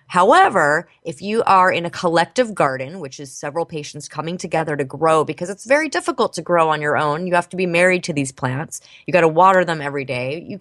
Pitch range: 150-195 Hz